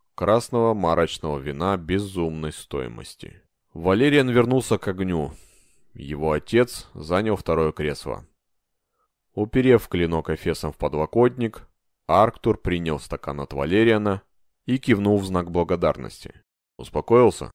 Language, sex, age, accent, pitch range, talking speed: Russian, male, 30-49, native, 80-110 Hz, 105 wpm